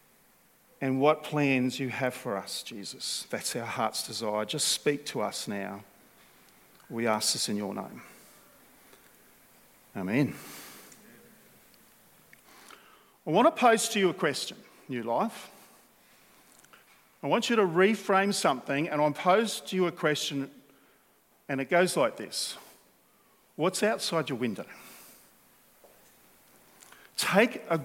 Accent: Australian